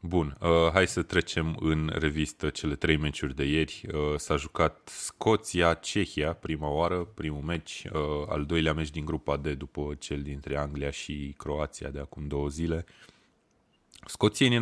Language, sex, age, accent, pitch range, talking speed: Romanian, male, 20-39, native, 70-80 Hz, 145 wpm